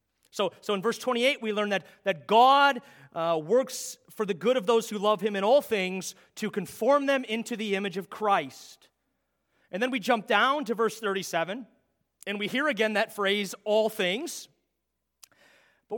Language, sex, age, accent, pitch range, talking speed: English, male, 30-49, American, 200-265 Hz, 180 wpm